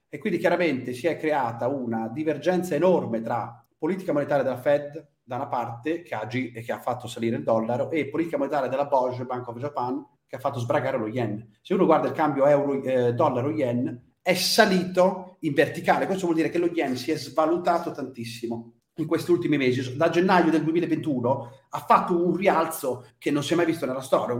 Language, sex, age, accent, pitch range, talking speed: Italian, male, 40-59, native, 135-185 Hz, 200 wpm